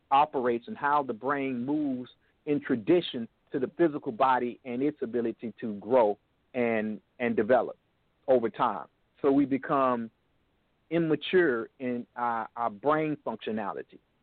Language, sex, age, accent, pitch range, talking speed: English, male, 50-69, American, 125-160 Hz, 130 wpm